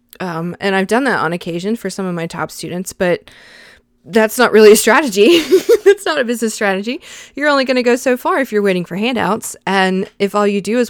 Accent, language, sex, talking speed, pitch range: American, English, female, 230 wpm, 180-225 Hz